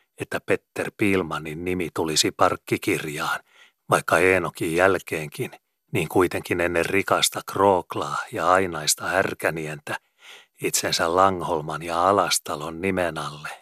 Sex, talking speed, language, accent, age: male, 95 wpm, Finnish, native, 40-59